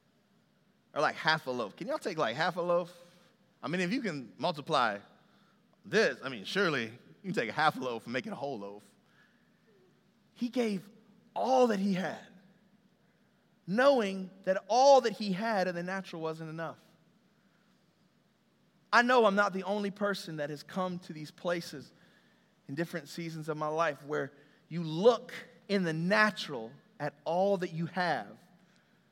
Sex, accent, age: male, American, 30-49